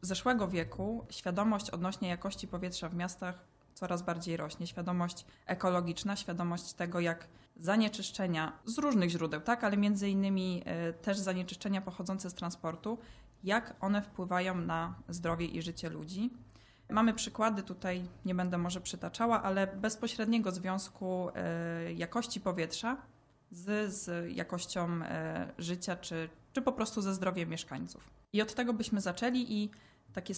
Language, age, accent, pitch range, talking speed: Polish, 20-39, native, 175-215 Hz, 130 wpm